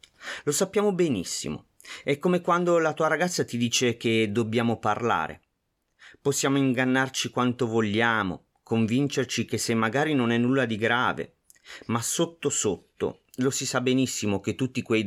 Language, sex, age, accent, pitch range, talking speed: Italian, male, 30-49, native, 105-135 Hz, 145 wpm